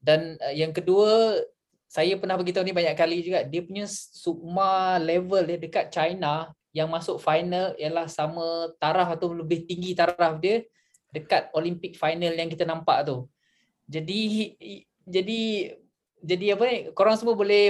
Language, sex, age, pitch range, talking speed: Malay, male, 20-39, 160-195 Hz, 145 wpm